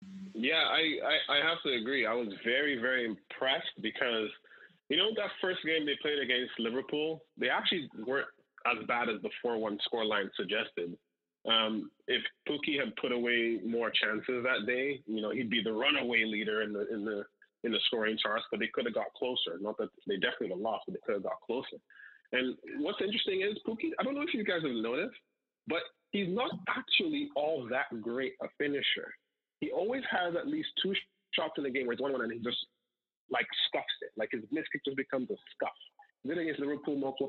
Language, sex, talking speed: English, male, 210 wpm